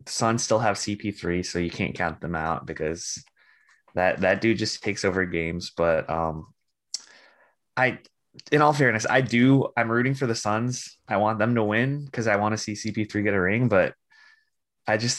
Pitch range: 85-110 Hz